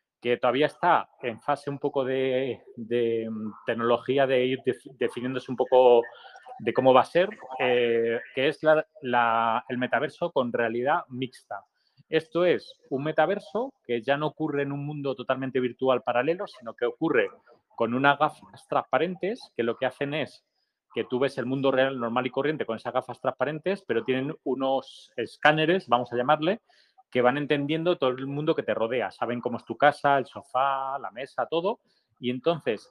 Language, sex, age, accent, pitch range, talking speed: Italian, male, 30-49, Spanish, 125-160 Hz, 180 wpm